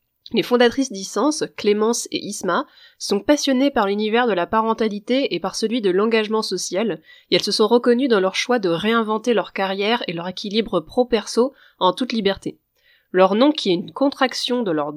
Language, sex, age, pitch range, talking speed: French, female, 20-39, 190-245 Hz, 185 wpm